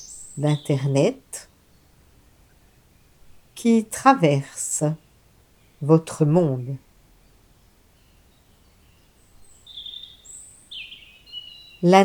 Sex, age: female, 50-69